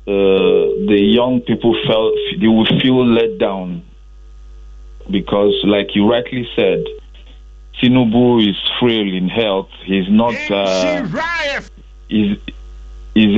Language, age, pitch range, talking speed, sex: English, 50-69, 80-125 Hz, 110 wpm, male